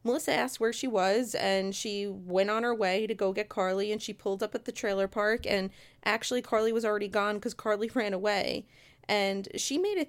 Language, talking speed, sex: English, 220 wpm, female